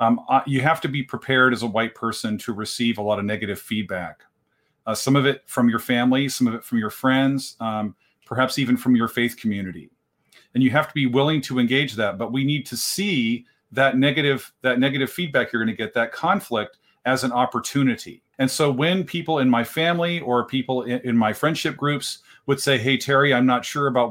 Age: 40-59